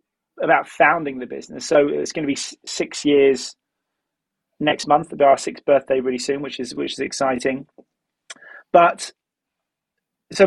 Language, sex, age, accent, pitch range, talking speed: English, male, 30-49, British, 135-175 Hz, 145 wpm